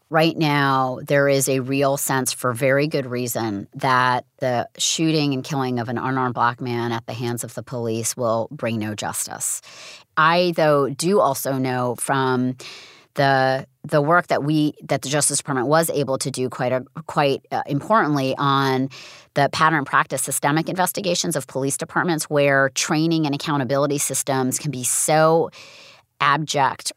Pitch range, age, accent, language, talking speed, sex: 135-160 Hz, 30-49, American, English, 160 wpm, female